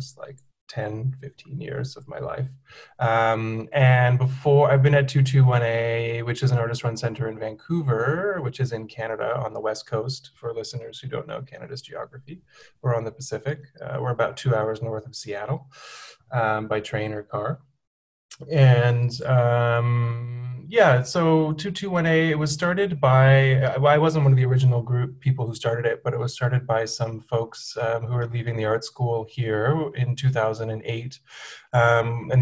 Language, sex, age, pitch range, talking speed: English, male, 20-39, 115-140 Hz, 175 wpm